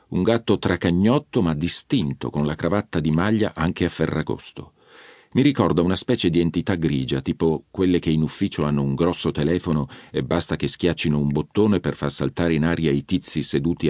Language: Italian